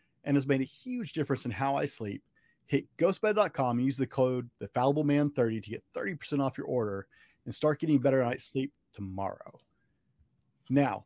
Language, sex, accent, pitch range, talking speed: English, male, American, 110-135 Hz, 175 wpm